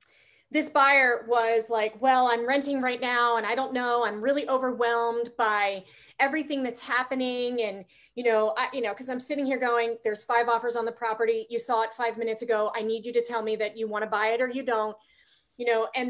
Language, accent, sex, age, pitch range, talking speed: English, American, female, 30-49, 235-310 Hz, 225 wpm